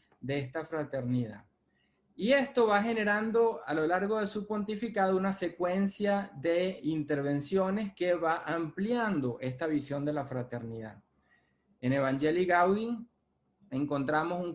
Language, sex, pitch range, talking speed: Spanish, male, 150-220 Hz, 125 wpm